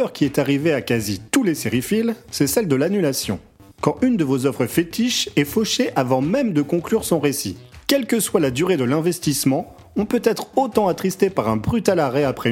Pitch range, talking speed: 125-195 Hz, 205 wpm